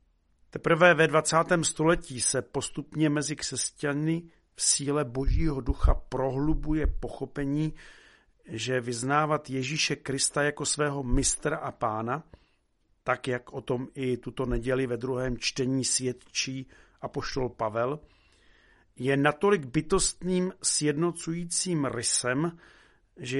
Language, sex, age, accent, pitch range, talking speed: Czech, male, 50-69, native, 130-155 Hz, 110 wpm